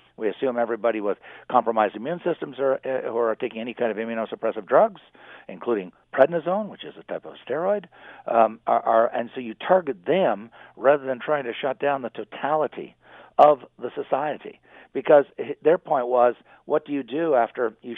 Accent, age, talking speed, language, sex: American, 60-79, 180 wpm, English, male